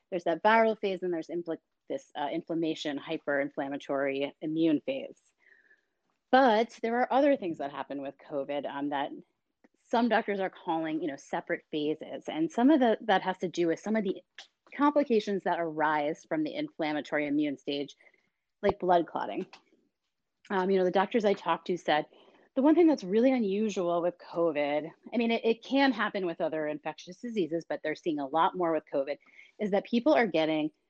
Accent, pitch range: American, 155-230 Hz